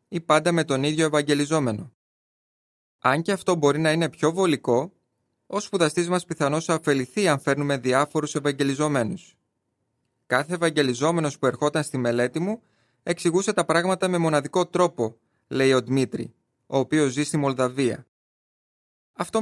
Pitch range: 130-160 Hz